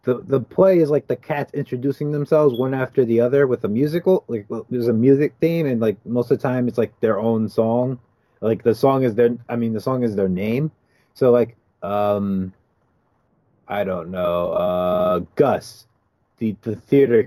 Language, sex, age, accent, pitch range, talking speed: English, male, 30-49, American, 100-120 Hz, 190 wpm